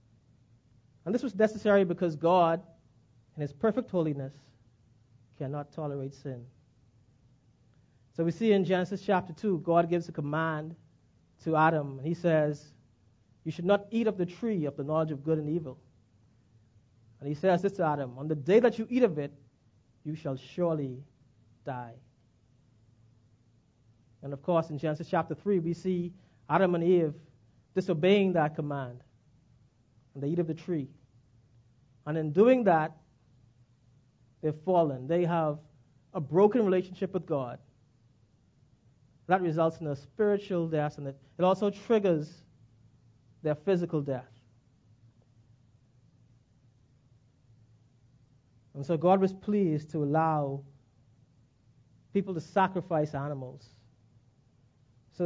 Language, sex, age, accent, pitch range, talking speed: English, male, 30-49, American, 120-170 Hz, 130 wpm